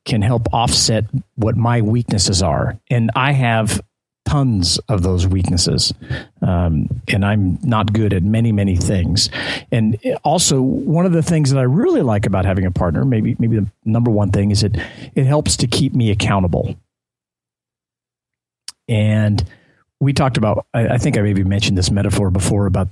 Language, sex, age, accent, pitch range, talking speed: English, male, 50-69, American, 100-130 Hz, 170 wpm